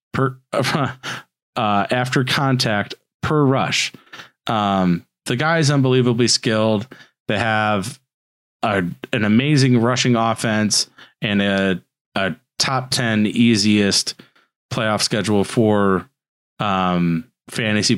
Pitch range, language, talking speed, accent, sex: 105-135 Hz, English, 100 wpm, American, male